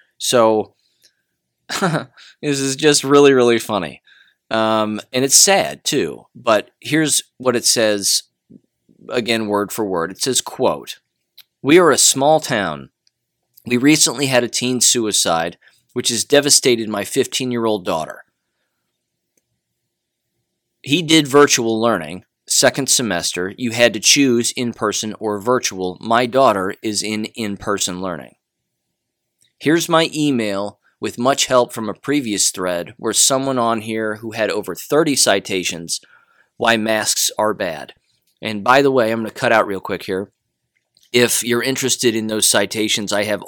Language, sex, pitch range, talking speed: English, male, 100-125 Hz, 145 wpm